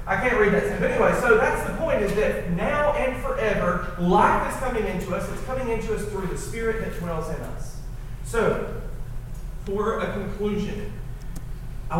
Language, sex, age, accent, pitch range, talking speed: English, male, 40-59, American, 135-205 Hz, 180 wpm